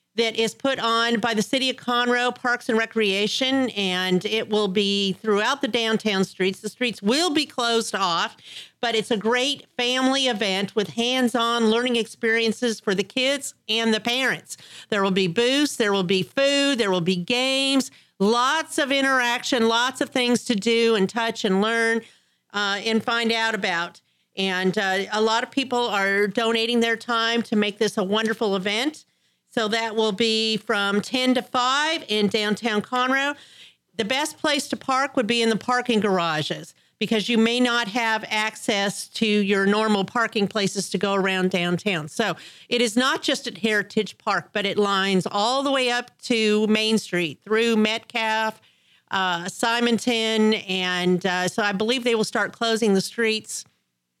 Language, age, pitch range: English, 50-69, 205-245 Hz